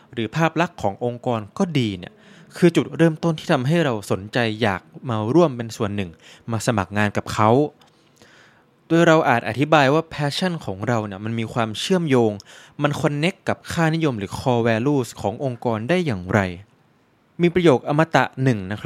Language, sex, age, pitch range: Thai, male, 20-39, 110-145 Hz